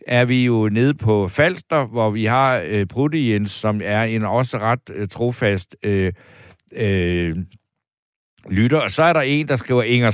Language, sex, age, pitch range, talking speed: Danish, male, 60-79, 110-150 Hz, 180 wpm